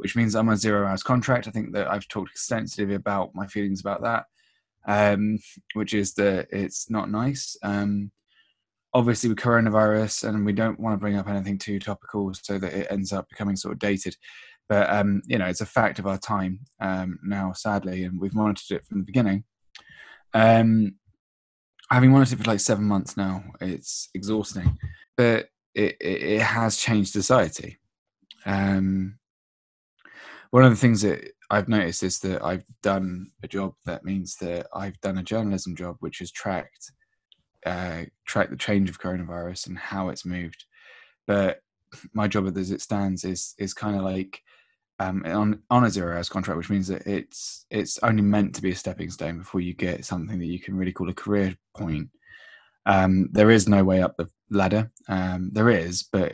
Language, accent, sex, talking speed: English, British, male, 185 wpm